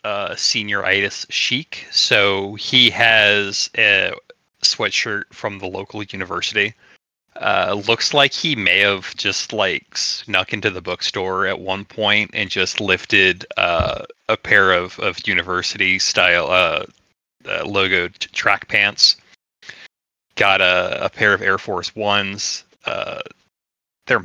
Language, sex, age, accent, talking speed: English, male, 30-49, American, 130 wpm